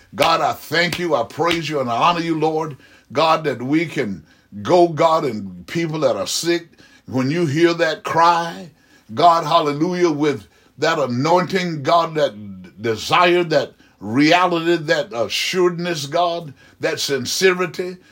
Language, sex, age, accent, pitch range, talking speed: English, male, 60-79, American, 145-175 Hz, 140 wpm